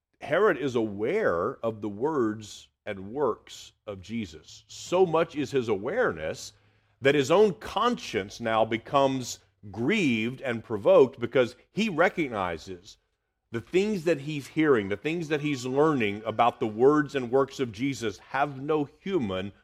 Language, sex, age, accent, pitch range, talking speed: English, male, 50-69, American, 95-140 Hz, 145 wpm